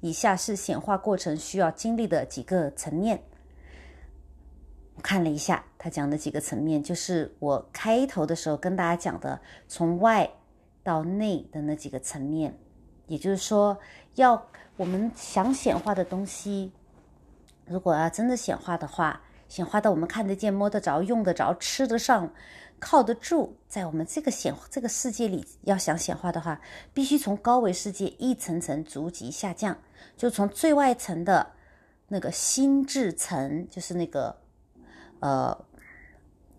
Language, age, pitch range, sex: Chinese, 30-49, 155-225 Hz, female